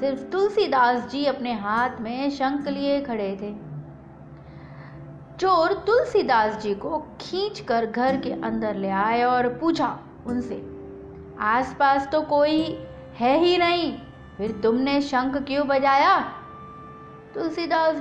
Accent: native